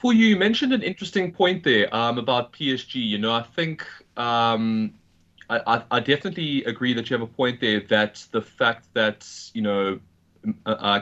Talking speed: 170 wpm